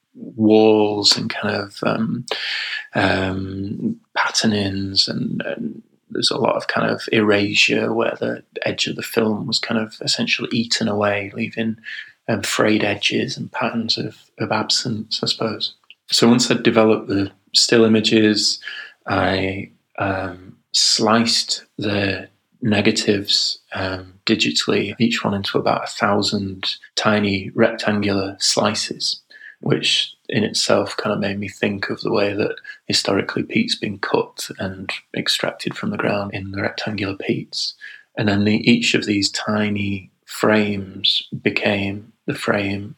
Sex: male